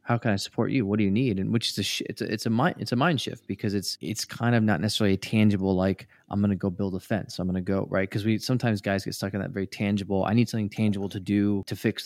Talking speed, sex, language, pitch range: 310 wpm, male, English, 100-115 Hz